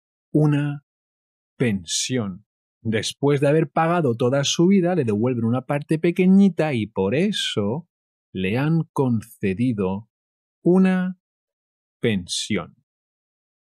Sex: male